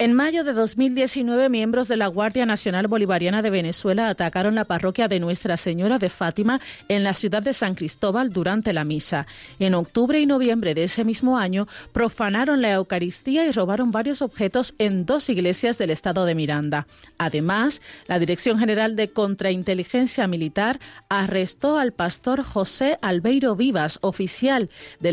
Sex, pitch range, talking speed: female, 180-235 Hz, 160 wpm